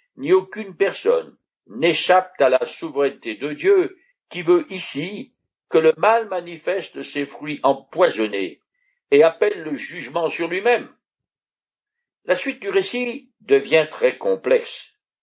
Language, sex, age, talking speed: French, male, 60-79, 125 wpm